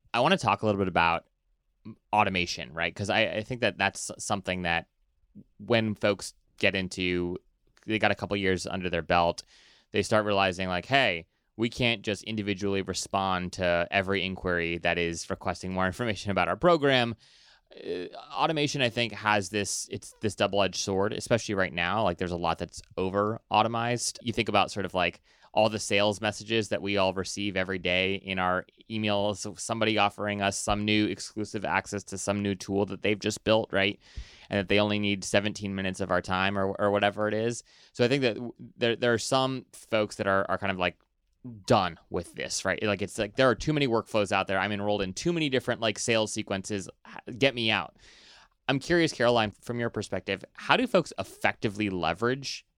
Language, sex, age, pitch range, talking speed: English, male, 20-39, 95-110 Hz, 195 wpm